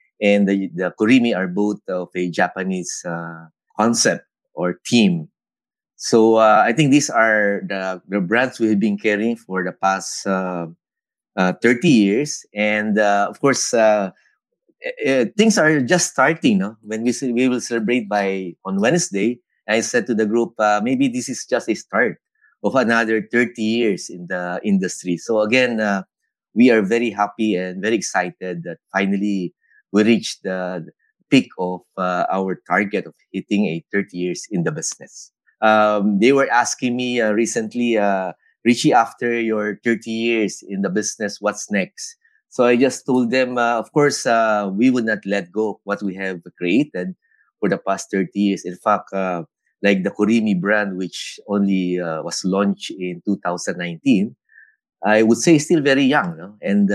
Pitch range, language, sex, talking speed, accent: 95-125 Hz, English, male, 170 wpm, Filipino